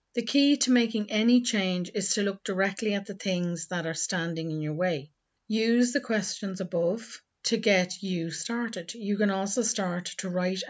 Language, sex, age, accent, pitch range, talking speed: English, female, 40-59, Irish, 175-220 Hz, 185 wpm